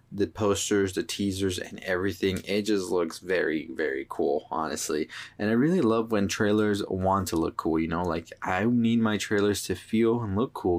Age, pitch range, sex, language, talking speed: 20-39, 100-110 Hz, male, English, 195 wpm